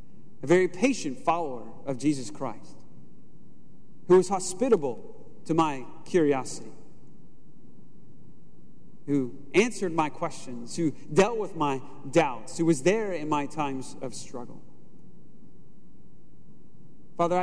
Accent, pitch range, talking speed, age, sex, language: American, 150-205 Hz, 105 wpm, 40-59, male, English